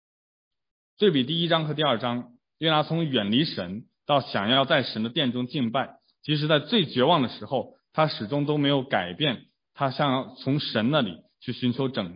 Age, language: 20-39, Chinese